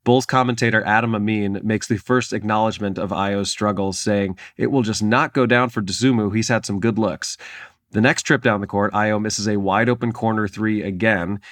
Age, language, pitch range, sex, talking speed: 30-49, English, 100-120 Hz, male, 205 wpm